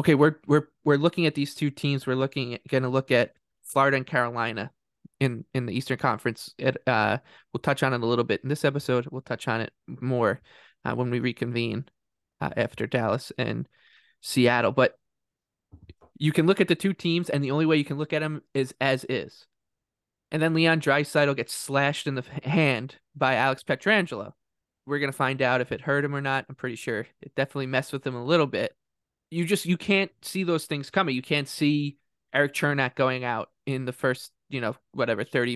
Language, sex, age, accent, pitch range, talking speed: English, male, 20-39, American, 125-145 Hz, 210 wpm